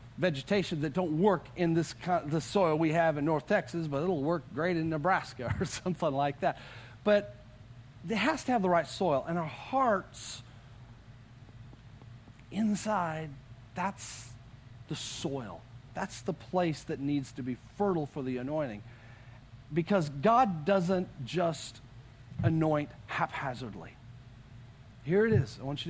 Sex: male